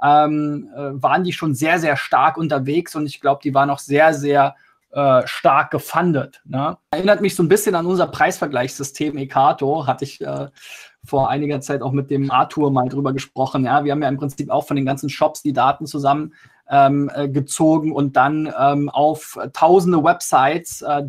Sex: male